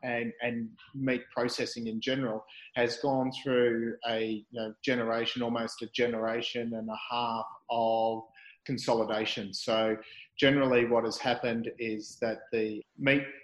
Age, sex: 30-49, male